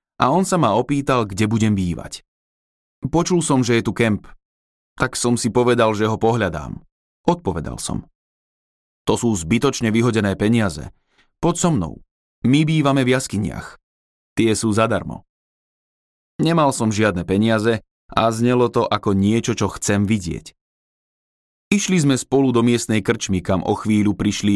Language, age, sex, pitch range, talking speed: Slovak, 30-49, male, 95-125 Hz, 145 wpm